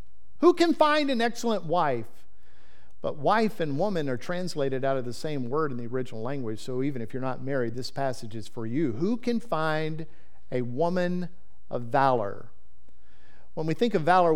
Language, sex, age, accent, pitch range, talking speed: English, male, 50-69, American, 120-190 Hz, 185 wpm